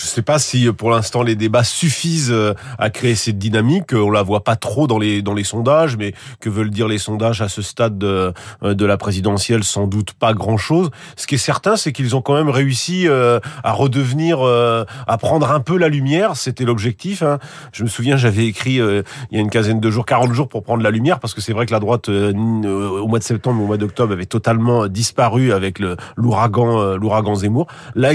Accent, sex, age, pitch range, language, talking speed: French, male, 40-59, 110-140 Hz, French, 220 wpm